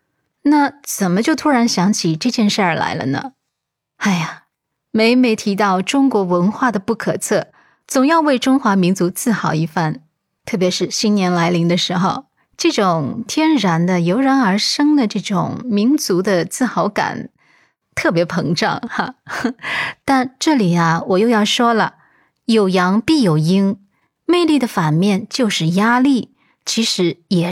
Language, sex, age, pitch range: Chinese, female, 20-39, 175-245 Hz